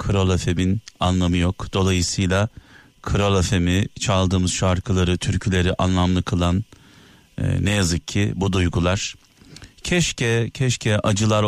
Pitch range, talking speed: 90-105 Hz, 100 wpm